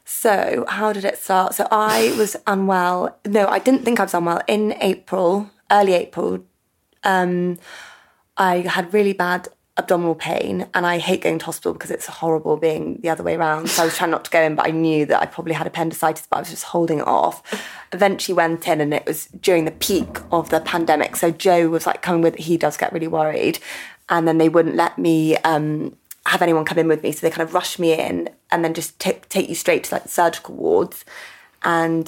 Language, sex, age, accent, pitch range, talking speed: English, female, 20-39, British, 165-185 Hz, 225 wpm